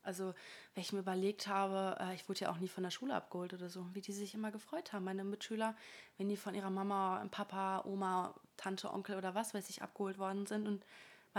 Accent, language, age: German, German, 20-39